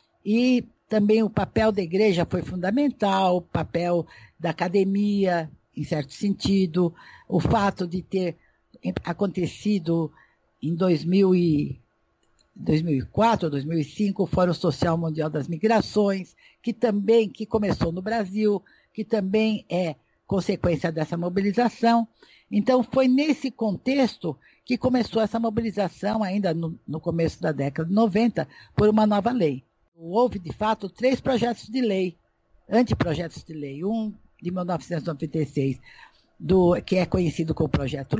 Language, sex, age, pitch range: Portuguese, female, 60-79, 165-220 Hz